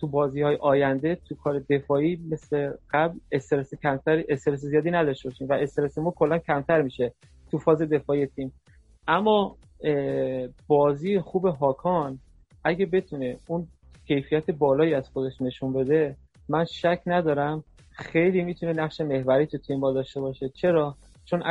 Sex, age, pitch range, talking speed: male, 30-49, 140-165 Hz, 135 wpm